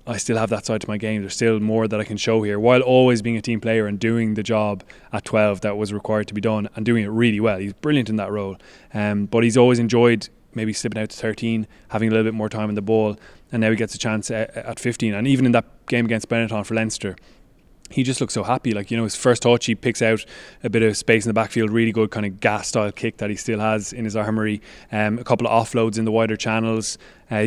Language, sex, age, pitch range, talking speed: English, male, 20-39, 105-115 Hz, 270 wpm